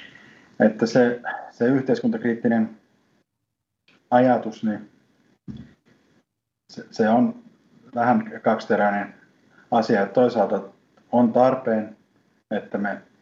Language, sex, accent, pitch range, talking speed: Finnish, male, native, 100-120 Hz, 80 wpm